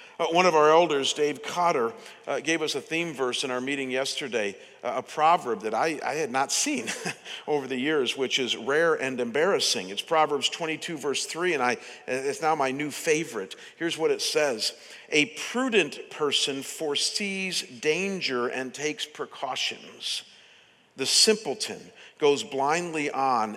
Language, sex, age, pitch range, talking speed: English, male, 50-69, 135-205 Hz, 150 wpm